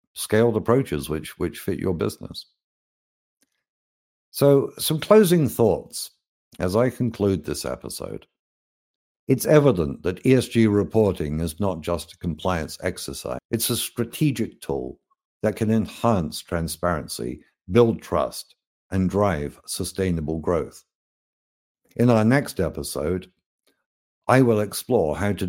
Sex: male